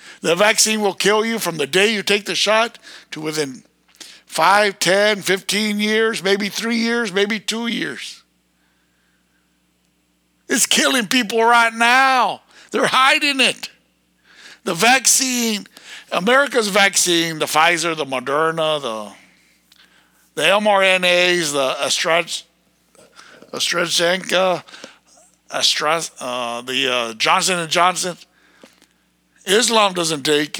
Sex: male